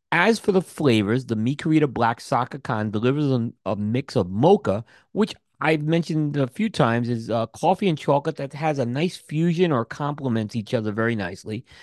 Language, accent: English, American